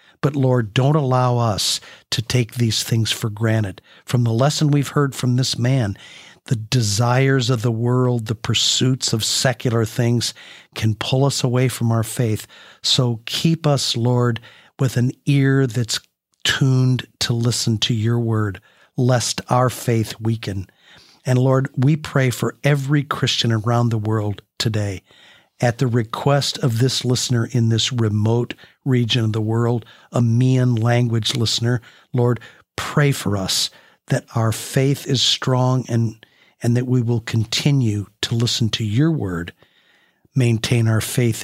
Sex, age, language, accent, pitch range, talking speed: male, 50-69, English, American, 110-130 Hz, 150 wpm